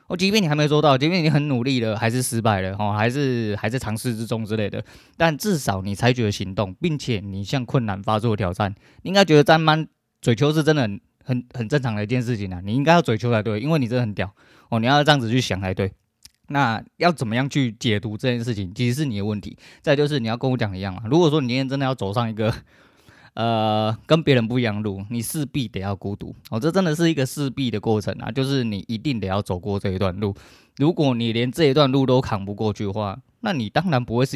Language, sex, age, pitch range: Chinese, male, 20-39, 110-145 Hz